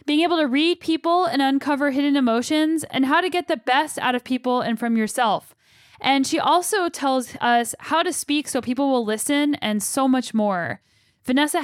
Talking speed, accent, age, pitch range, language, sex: 195 wpm, American, 10-29, 230-290 Hz, English, female